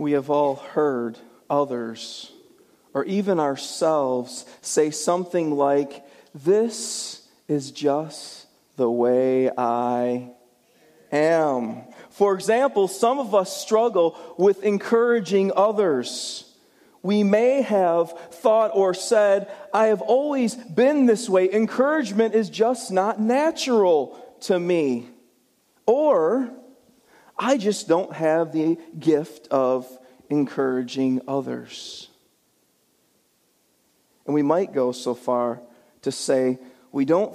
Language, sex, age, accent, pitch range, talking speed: English, male, 40-59, American, 140-215 Hz, 105 wpm